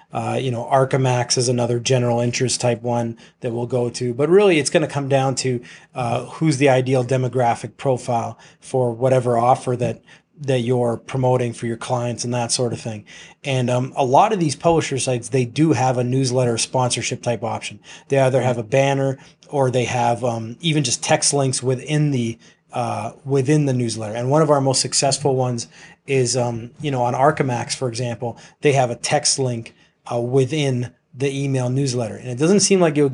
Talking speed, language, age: 200 wpm, English, 30-49